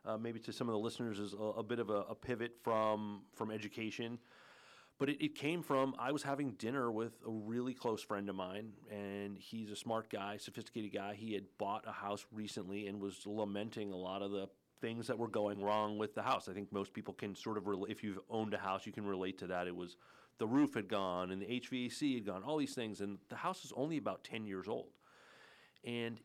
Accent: American